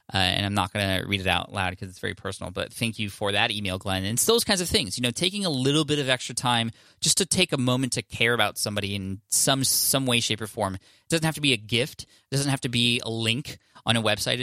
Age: 20-39